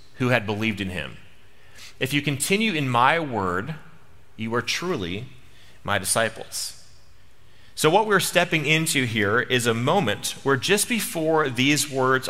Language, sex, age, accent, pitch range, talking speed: English, male, 30-49, American, 105-135 Hz, 145 wpm